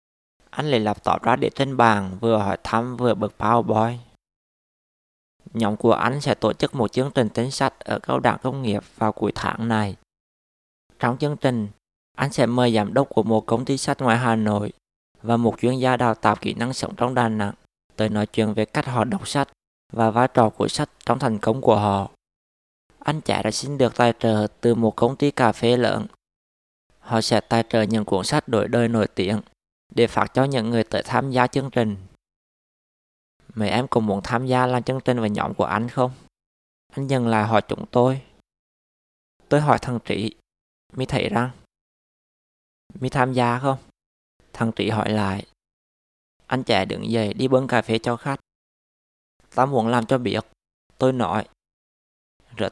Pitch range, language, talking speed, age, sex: 105-125 Hz, Vietnamese, 190 wpm, 20-39, male